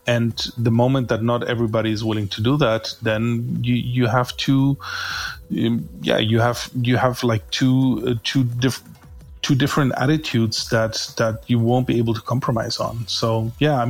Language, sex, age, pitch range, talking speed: English, male, 30-49, 115-130 Hz, 180 wpm